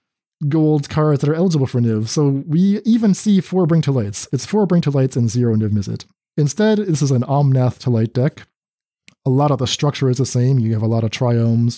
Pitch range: 115-150 Hz